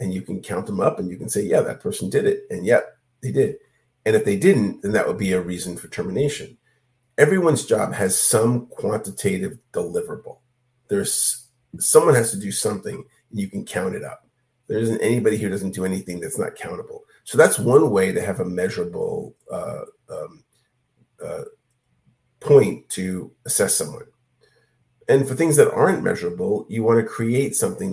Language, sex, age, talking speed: English, male, 50-69, 185 wpm